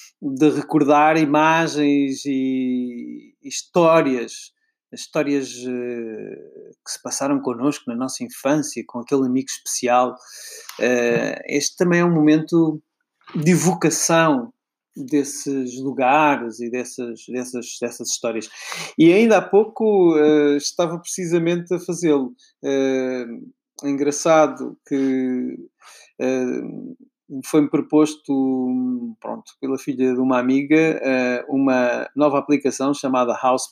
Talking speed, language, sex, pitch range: 95 wpm, Portuguese, male, 125-160 Hz